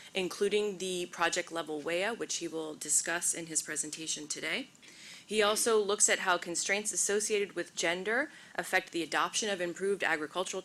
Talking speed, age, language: 160 wpm, 20-39, English